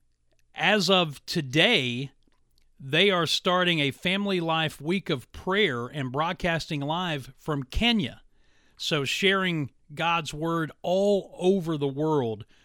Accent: American